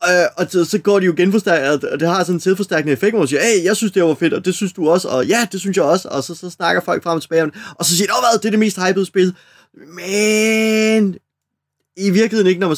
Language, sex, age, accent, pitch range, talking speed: Danish, male, 20-39, native, 130-175 Hz, 285 wpm